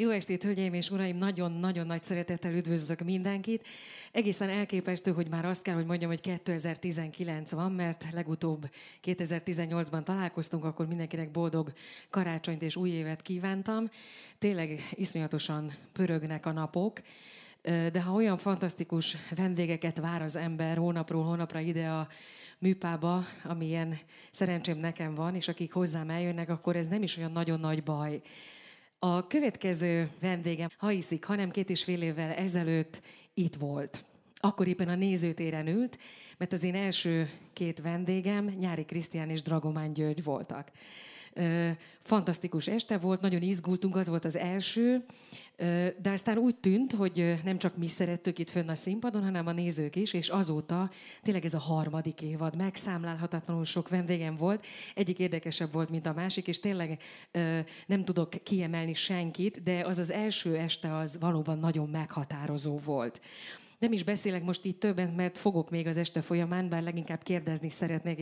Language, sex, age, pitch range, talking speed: Hungarian, female, 30-49, 165-190 Hz, 150 wpm